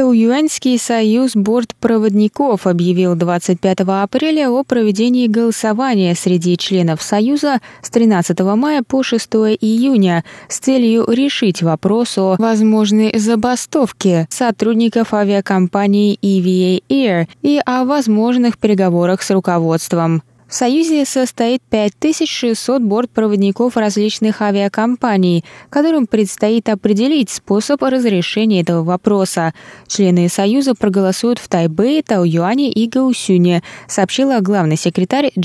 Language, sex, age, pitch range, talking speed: Russian, female, 20-39, 185-245 Hz, 100 wpm